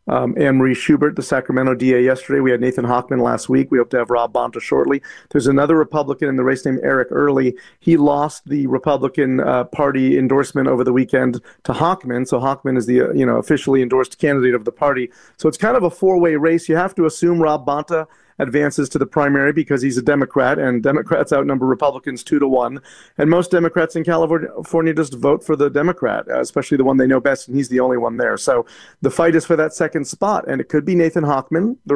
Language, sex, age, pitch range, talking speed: English, male, 40-59, 135-165 Hz, 225 wpm